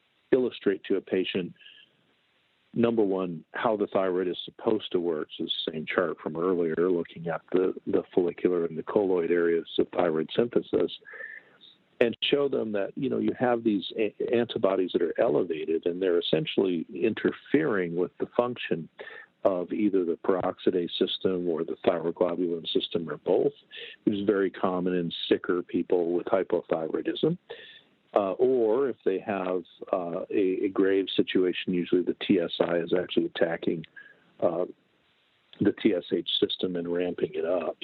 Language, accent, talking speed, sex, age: English, American, 150 wpm, male, 50-69